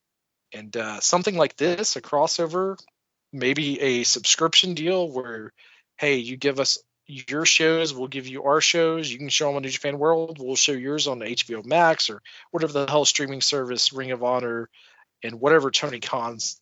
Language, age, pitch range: English, 40-59, 125-165 Hz